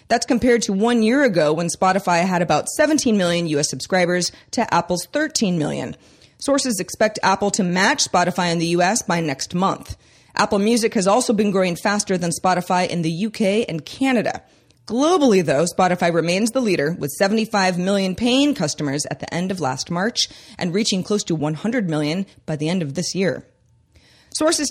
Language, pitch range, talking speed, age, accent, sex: English, 170-230 Hz, 180 wpm, 30-49, American, female